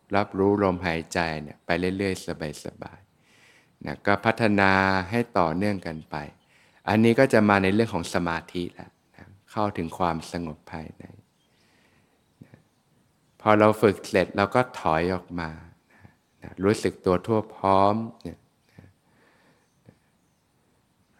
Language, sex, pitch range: Thai, male, 90-105 Hz